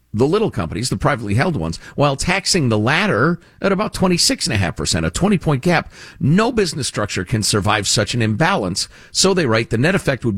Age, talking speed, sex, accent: 50-69, 185 wpm, male, American